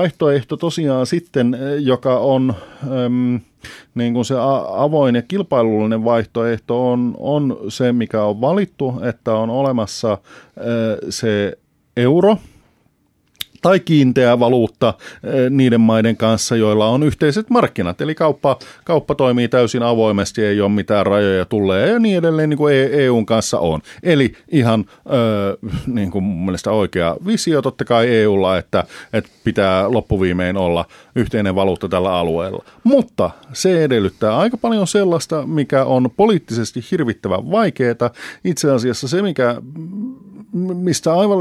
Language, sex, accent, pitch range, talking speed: Finnish, male, native, 110-155 Hz, 125 wpm